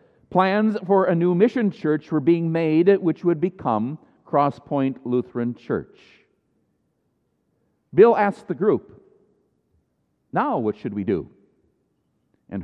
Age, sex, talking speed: 50-69, male, 125 wpm